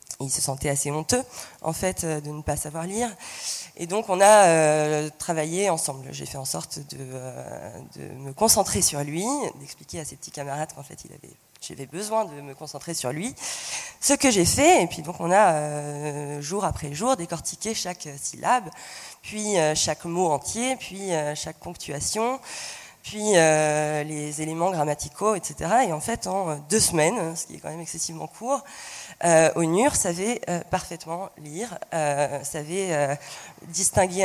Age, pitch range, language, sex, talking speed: 20-39, 150-185 Hz, French, female, 175 wpm